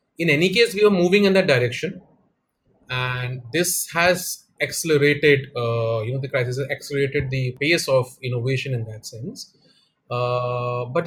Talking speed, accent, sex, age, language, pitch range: 145 wpm, Indian, male, 30-49, English, 130-195 Hz